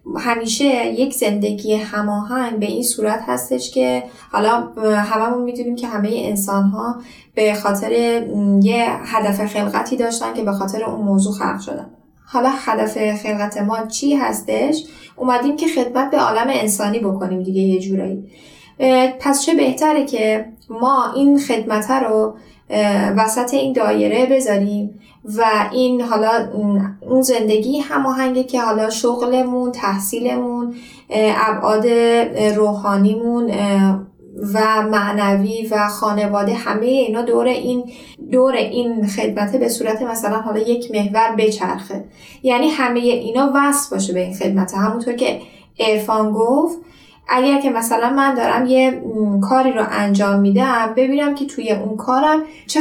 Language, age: Persian, 10-29